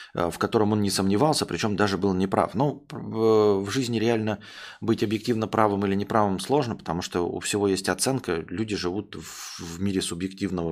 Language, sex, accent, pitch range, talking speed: Russian, male, native, 100-125 Hz, 170 wpm